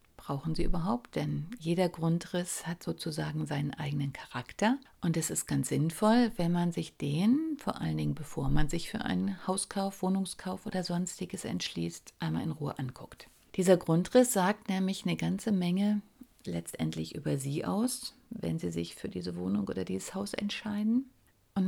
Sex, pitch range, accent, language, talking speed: female, 145-200 Hz, German, German, 165 wpm